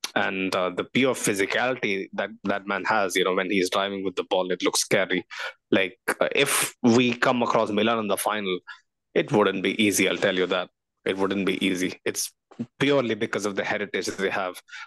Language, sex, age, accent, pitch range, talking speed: English, male, 20-39, Indian, 100-140 Hz, 200 wpm